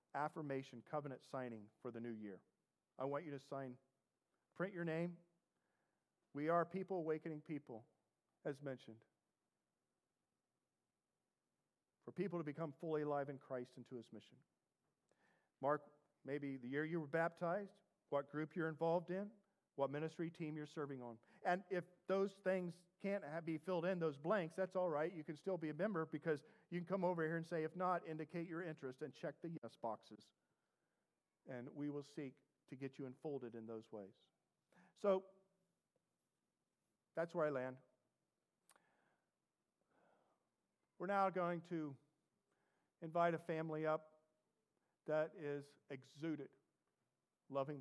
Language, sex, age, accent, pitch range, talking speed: English, male, 40-59, American, 135-170 Hz, 145 wpm